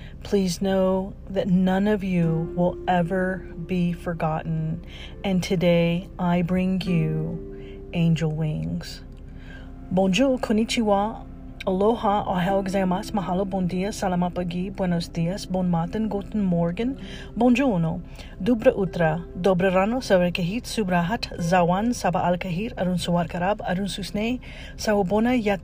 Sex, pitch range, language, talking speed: female, 170-200 Hz, English, 110 wpm